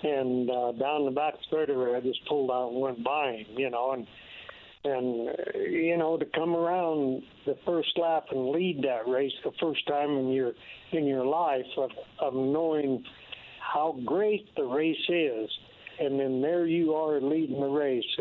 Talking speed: 190 wpm